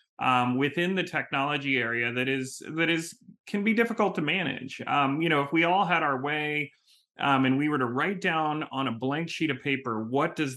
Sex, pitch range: male, 120-150 Hz